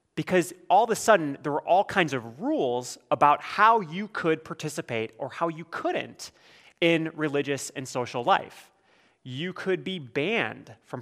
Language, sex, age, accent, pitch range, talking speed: English, male, 30-49, American, 135-210 Hz, 165 wpm